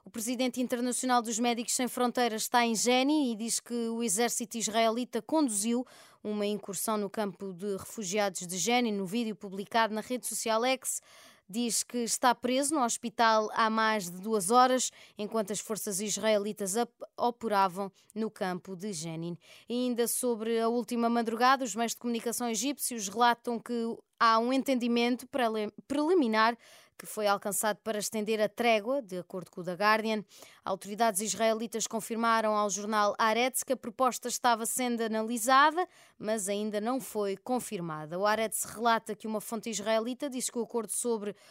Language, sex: Portuguese, female